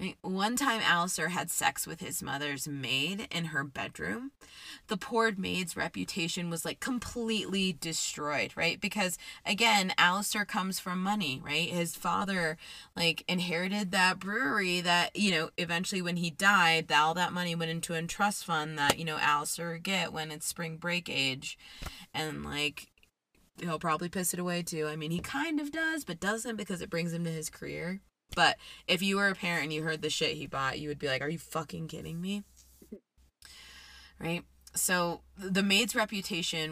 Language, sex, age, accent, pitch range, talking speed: English, female, 20-39, American, 160-200 Hz, 185 wpm